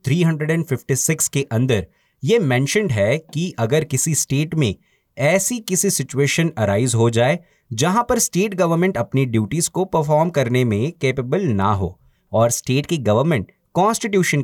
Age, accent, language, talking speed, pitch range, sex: 30-49, native, Hindi, 140 wpm, 115-165 Hz, male